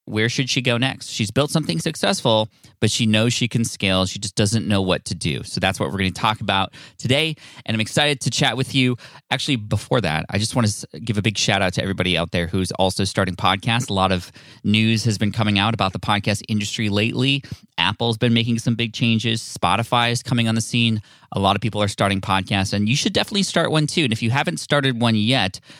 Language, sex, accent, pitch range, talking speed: English, male, American, 100-130 Hz, 235 wpm